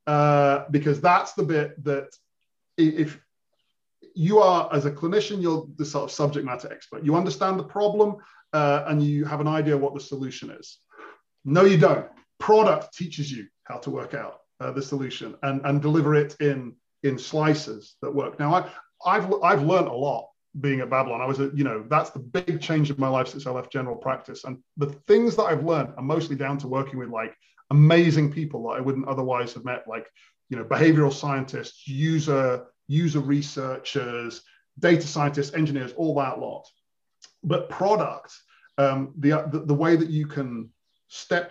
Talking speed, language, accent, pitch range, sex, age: 185 wpm, English, British, 135-155 Hz, male, 30-49